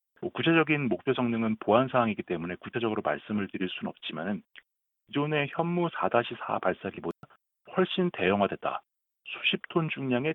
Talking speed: 115 wpm